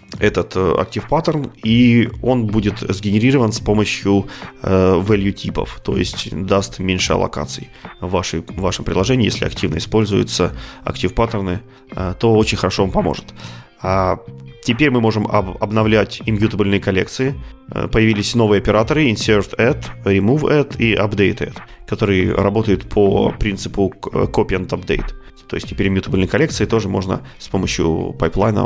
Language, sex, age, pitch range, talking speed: Russian, male, 30-49, 95-115 Hz, 125 wpm